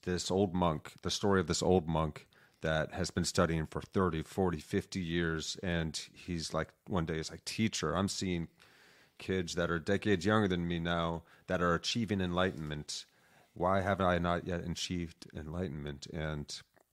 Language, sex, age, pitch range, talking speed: English, male, 30-49, 80-95 Hz, 175 wpm